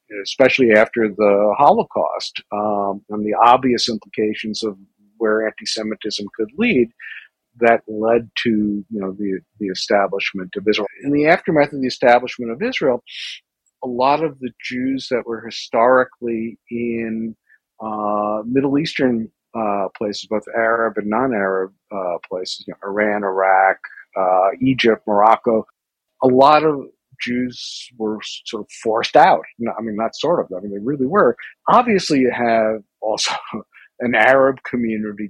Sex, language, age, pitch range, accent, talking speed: male, English, 50-69, 105-125 Hz, American, 145 wpm